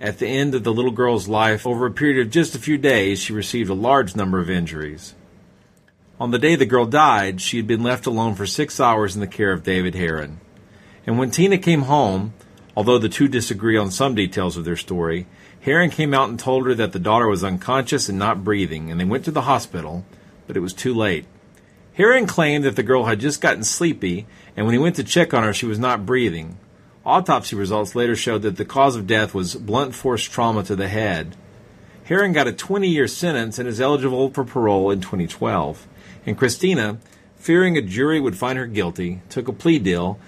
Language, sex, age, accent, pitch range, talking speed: English, male, 40-59, American, 100-135 Hz, 215 wpm